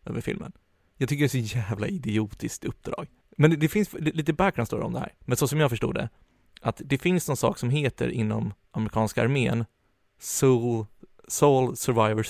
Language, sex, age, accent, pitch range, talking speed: Swedish, male, 30-49, native, 110-125 Hz, 190 wpm